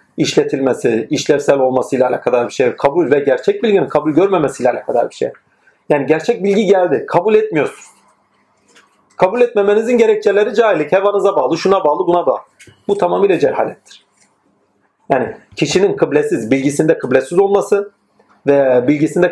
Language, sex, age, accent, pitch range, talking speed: Turkish, male, 40-59, native, 140-230 Hz, 130 wpm